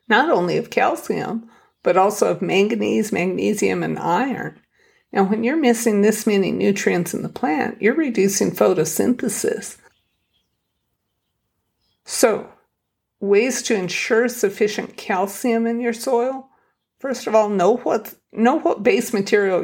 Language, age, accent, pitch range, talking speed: English, 50-69, American, 195-235 Hz, 125 wpm